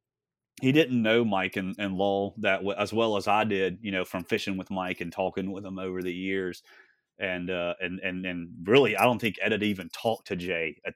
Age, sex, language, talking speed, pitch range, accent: 30-49, male, English, 235 wpm, 95-115 Hz, American